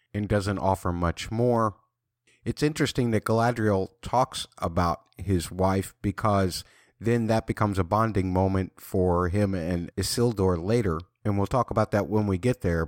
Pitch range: 95-120 Hz